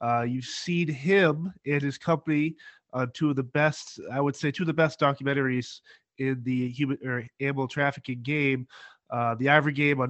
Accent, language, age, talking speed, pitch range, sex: American, English, 30-49, 185 wpm, 130-155 Hz, male